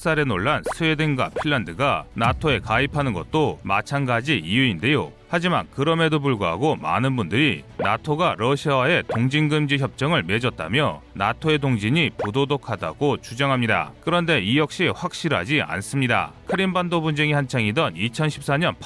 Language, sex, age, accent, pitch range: Korean, male, 30-49, native, 120-155 Hz